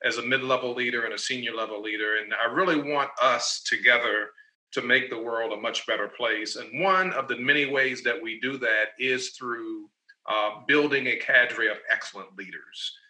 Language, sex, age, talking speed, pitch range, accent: English, male, 40-59, 190 wpm, 125-165 Hz, American